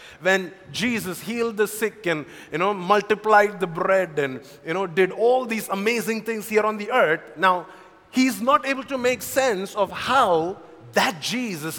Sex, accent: male, Indian